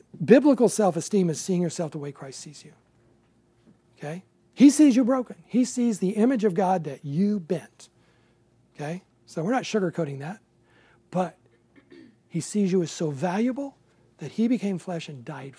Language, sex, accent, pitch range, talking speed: English, male, American, 135-205 Hz, 165 wpm